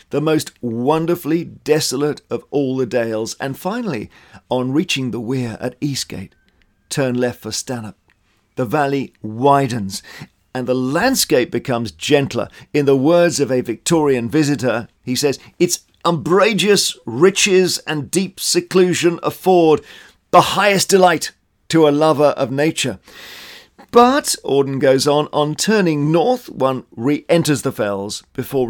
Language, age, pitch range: English, 50-69, 110-150 Hz